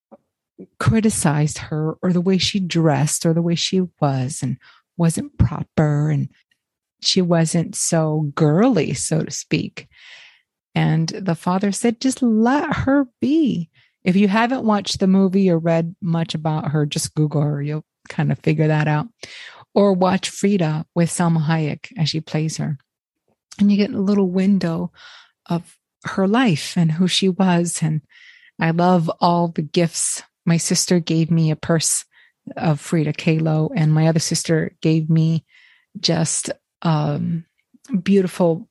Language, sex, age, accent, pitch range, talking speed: English, female, 30-49, American, 160-195 Hz, 150 wpm